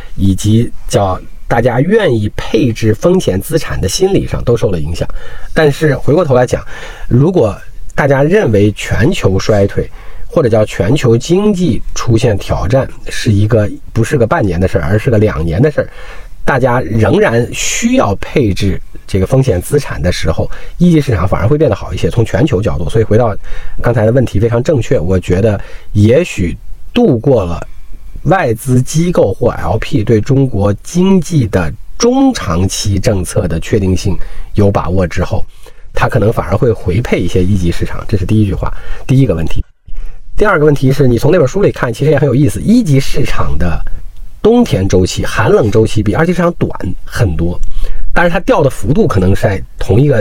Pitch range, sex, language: 95-135 Hz, male, Chinese